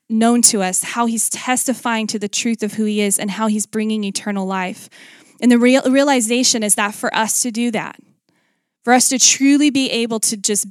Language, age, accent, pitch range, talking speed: English, 20-39, American, 210-240 Hz, 205 wpm